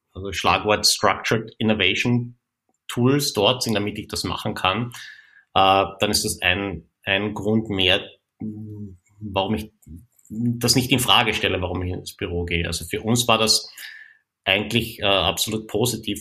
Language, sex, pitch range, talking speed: German, male, 95-110 Hz, 145 wpm